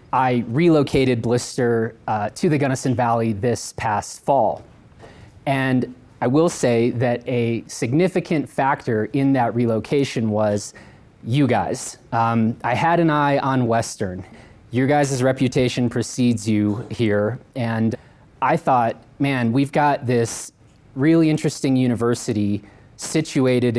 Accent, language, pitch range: American, English, 115-140 Hz